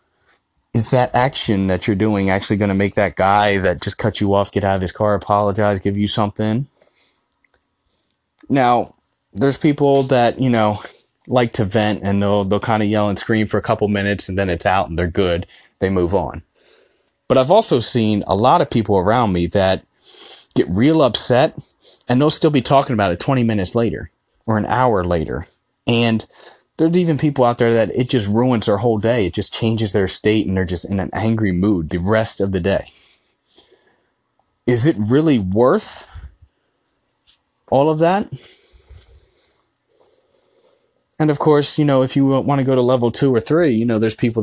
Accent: American